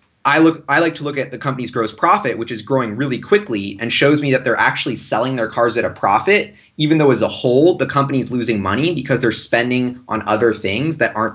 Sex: male